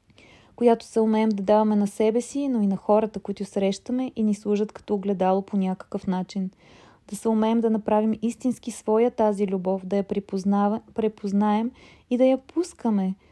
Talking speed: 170 wpm